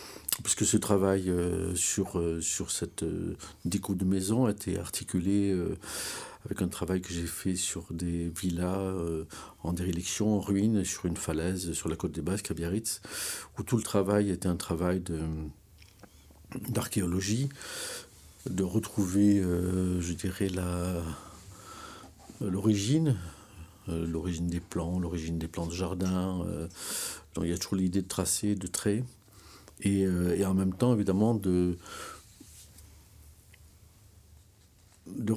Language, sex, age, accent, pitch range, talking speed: French, male, 50-69, French, 90-100 Hz, 130 wpm